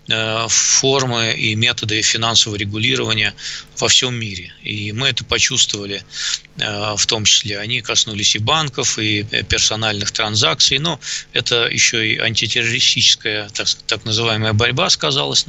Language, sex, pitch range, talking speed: Russian, male, 110-140 Hz, 125 wpm